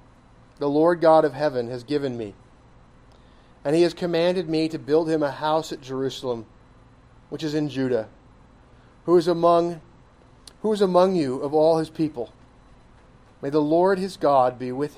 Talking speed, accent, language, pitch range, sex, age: 170 wpm, American, English, 125-160 Hz, male, 40-59